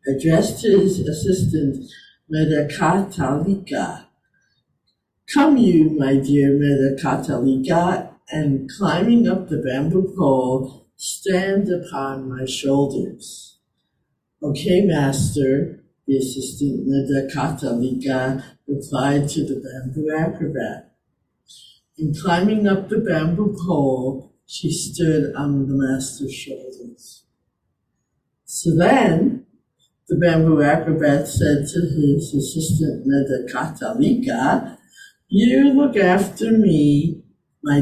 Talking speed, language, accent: 90 wpm, English, American